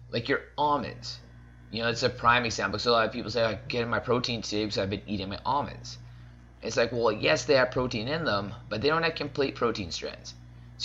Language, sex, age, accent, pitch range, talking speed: English, male, 20-39, American, 90-125 Hz, 250 wpm